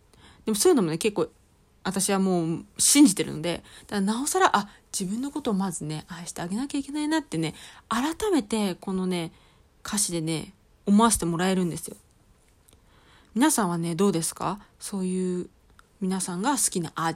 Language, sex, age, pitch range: Japanese, female, 20-39, 170-220 Hz